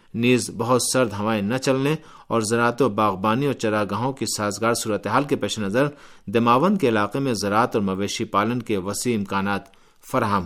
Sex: male